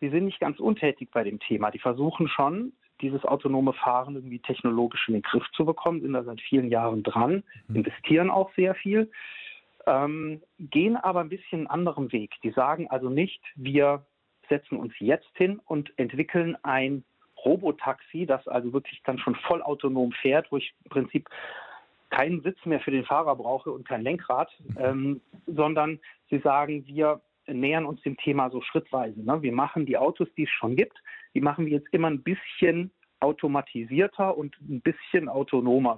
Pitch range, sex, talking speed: 130-165 Hz, male, 175 wpm